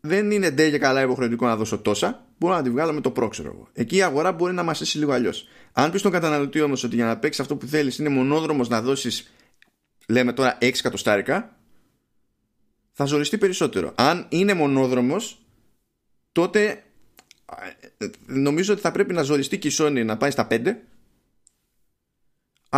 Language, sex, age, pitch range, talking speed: Greek, male, 20-39, 115-150 Hz, 170 wpm